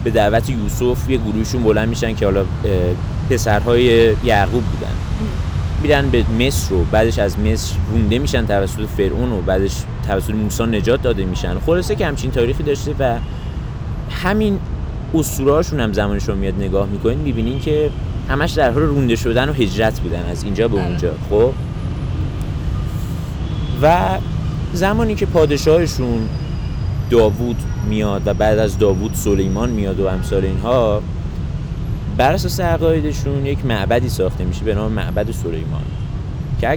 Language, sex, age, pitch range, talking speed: Persian, male, 30-49, 95-120 Hz, 135 wpm